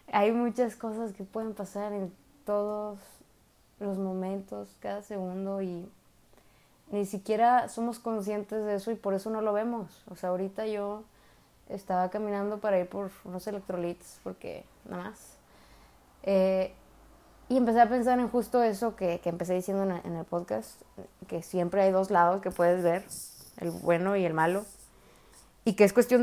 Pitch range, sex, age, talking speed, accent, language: 185-220 Hz, female, 20-39, 160 wpm, Mexican, Spanish